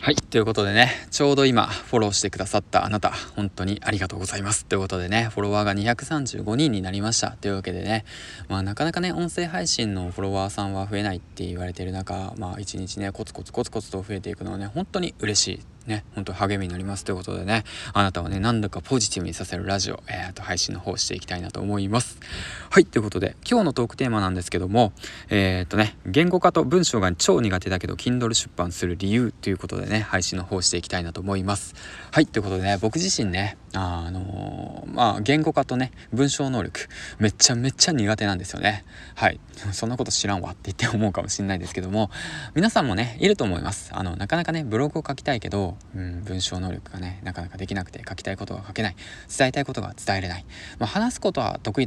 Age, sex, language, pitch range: 20-39, male, Japanese, 95-120 Hz